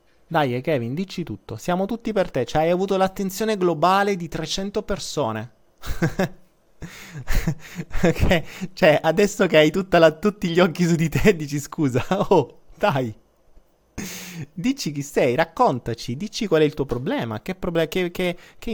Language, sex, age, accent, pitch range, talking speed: Italian, male, 20-39, native, 135-180 Hz, 140 wpm